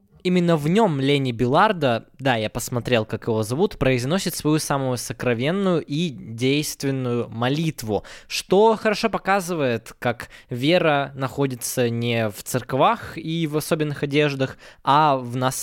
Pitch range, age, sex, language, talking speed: 130-165 Hz, 20-39, male, Russian, 130 wpm